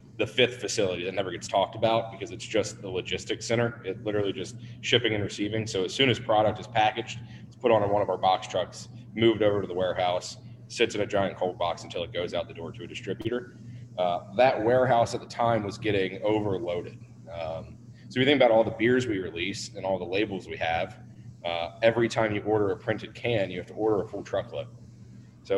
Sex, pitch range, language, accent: male, 95-120 Hz, English, American